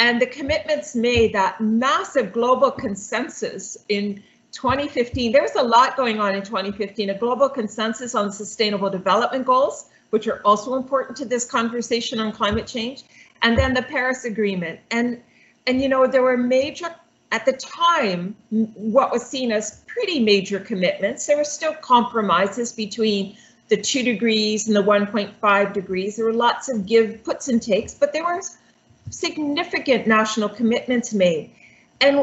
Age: 40-59